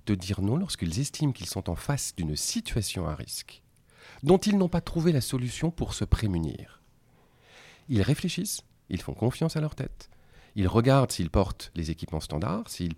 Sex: male